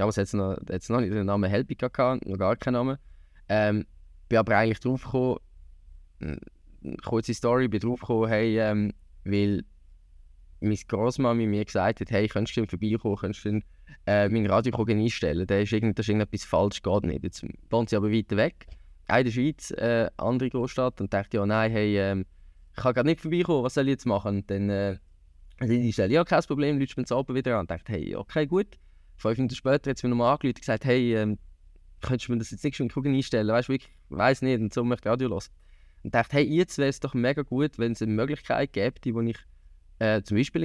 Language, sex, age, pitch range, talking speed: German, male, 20-39, 100-135 Hz, 225 wpm